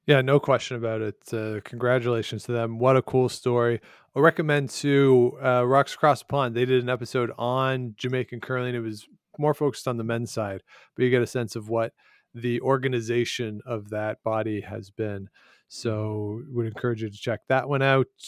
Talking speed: 190 wpm